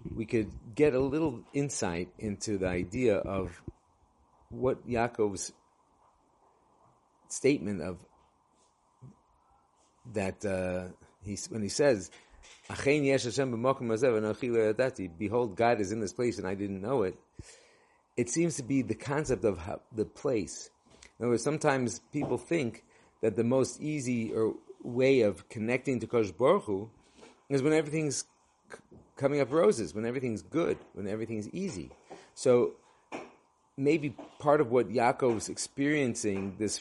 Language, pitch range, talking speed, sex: English, 100-135 Hz, 125 wpm, male